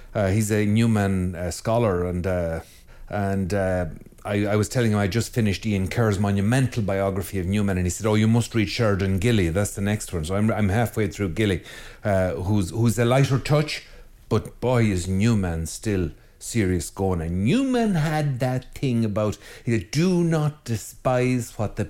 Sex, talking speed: male, 190 wpm